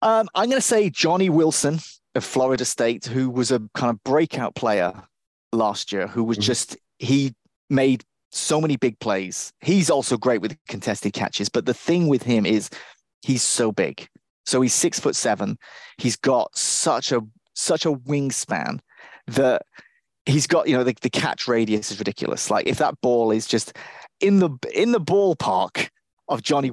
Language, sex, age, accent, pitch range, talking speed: English, male, 30-49, British, 110-140 Hz, 175 wpm